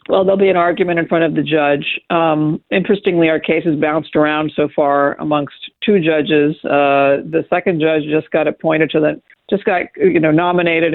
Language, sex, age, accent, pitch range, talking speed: English, female, 50-69, American, 155-200 Hz, 195 wpm